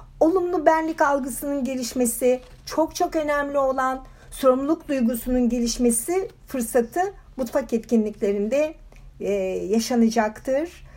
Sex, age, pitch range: female, 60-79, 225-315 Hz